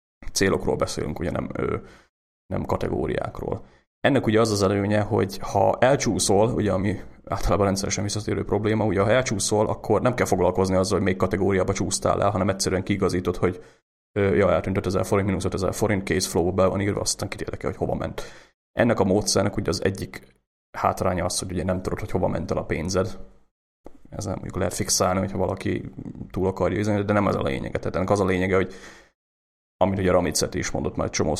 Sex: male